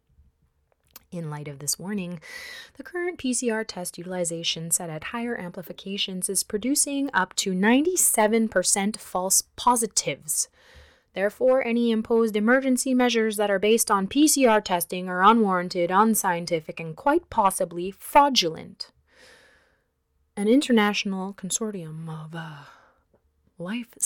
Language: English